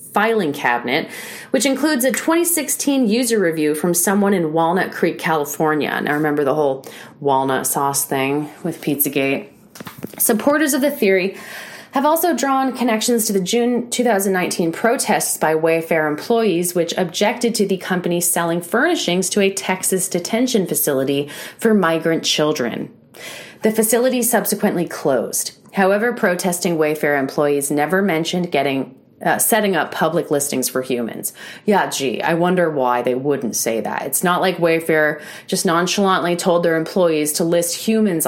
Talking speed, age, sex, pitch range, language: 145 wpm, 30-49, female, 165-230 Hz, English